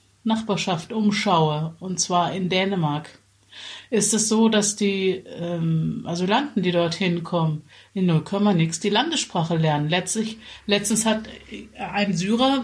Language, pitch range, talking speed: German, 170-215 Hz, 130 wpm